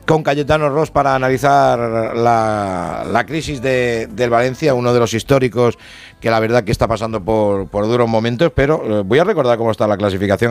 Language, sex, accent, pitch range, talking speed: Spanish, male, Spanish, 110-155 Hz, 185 wpm